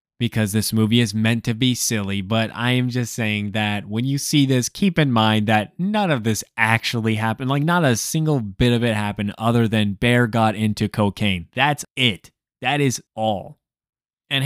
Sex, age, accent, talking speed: male, 20-39, American, 195 wpm